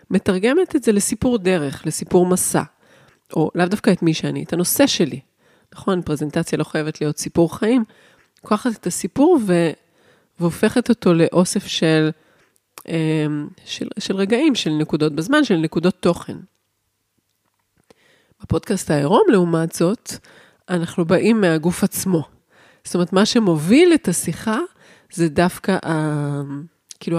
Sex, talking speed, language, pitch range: female, 130 wpm, Hebrew, 155-200 Hz